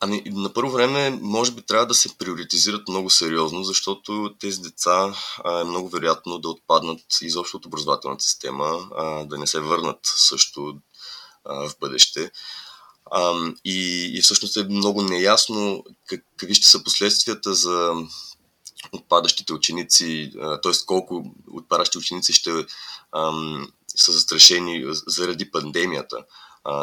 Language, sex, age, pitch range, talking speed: Bulgarian, male, 20-39, 80-100 Hz, 135 wpm